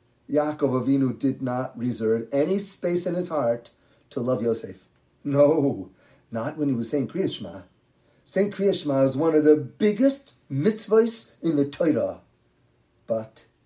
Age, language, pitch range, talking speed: 40-59, English, 125-200 Hz, 140 wpm